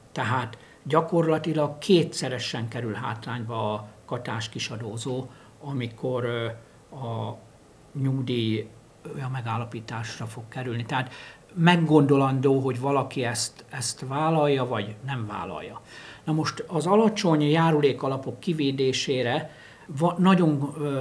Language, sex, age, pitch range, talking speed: Hungarian, male, 60-79, 120-155 Hz, 90 wpm